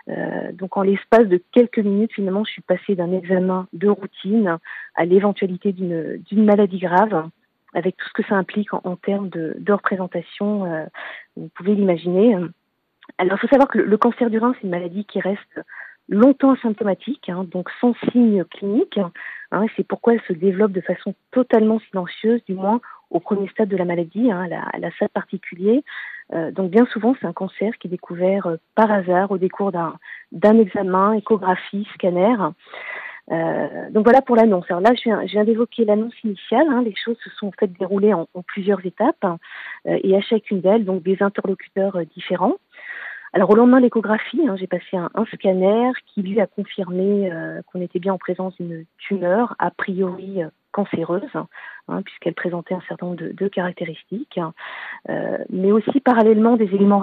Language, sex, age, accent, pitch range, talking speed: French, female, 40-59, French, 185-220 Hz, 185 wpm